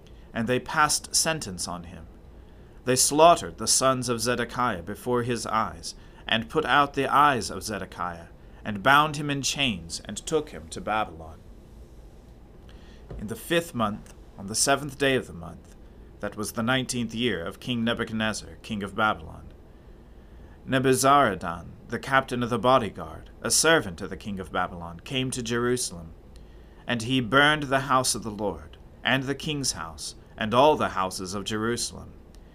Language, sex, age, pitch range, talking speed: English, male, 40-59, 95-130 Hz, 160 wpm